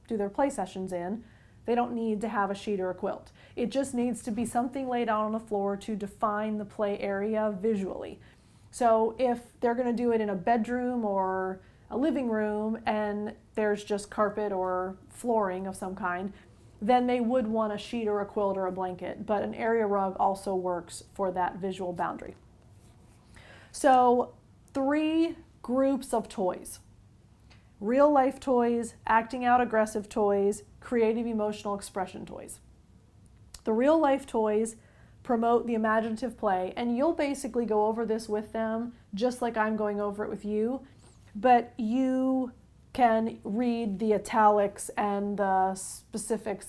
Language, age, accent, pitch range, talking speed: English, 30-49, American, 200-240 Hz, 160 wpm